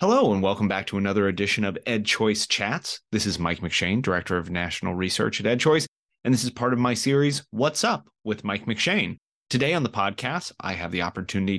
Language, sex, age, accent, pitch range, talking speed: English, male, 30-49, American, 95-120 Hz, 205 wpm